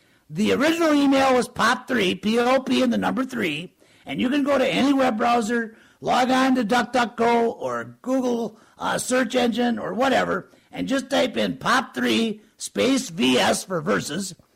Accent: American